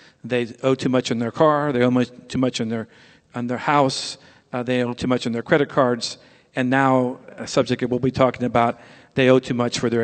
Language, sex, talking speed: English, male, 240 wpm